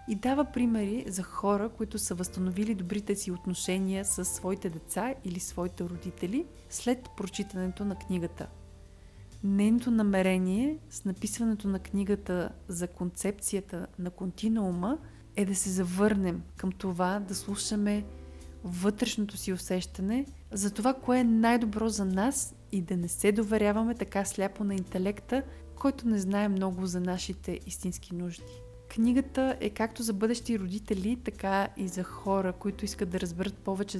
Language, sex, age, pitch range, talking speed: Bulgarian, female, 30-49, 185-220 Hz, 145 wpm